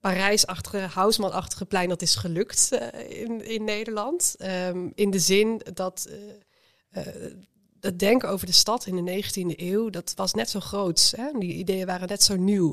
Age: 20-39